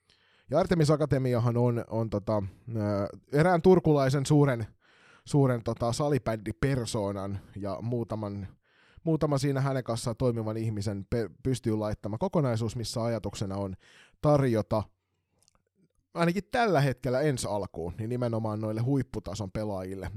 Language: Finnish